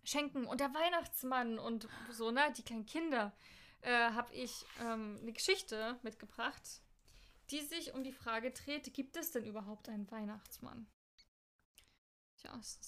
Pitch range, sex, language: 220-275 Hz, female, German